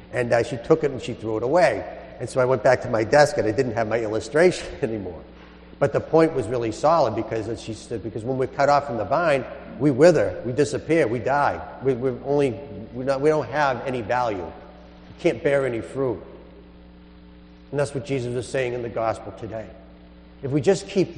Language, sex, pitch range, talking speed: English, male, 100-135 Hz, 220 wpm